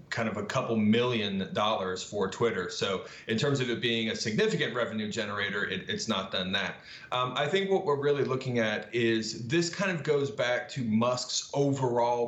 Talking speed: 195 wpm